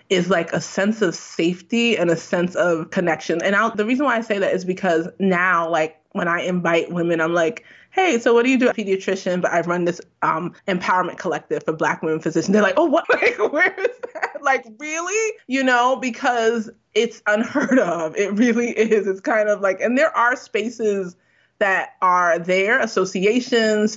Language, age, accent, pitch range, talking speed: English, 20-39, American, 180-240 Hz, 195 wpm